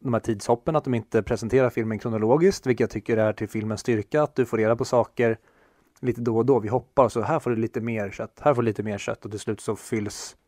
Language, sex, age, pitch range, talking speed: Swedish, male, 30-49, 110-125 Hz, 270 wpm